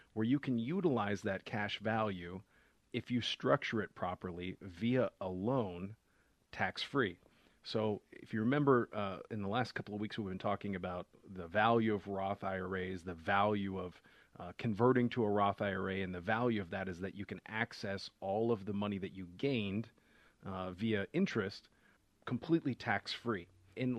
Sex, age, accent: male, 40-59, American